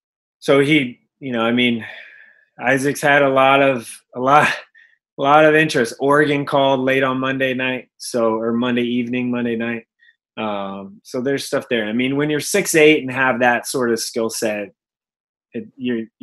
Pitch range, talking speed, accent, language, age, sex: 115-140 Hz, 175 wpm, American, English, 20-39, male